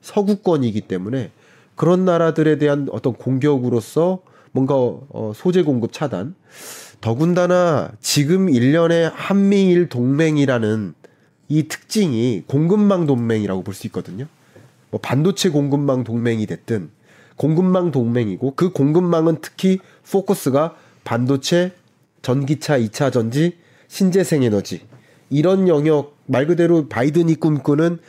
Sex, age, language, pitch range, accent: male, 30-49, Korean, 120-160 Hz, native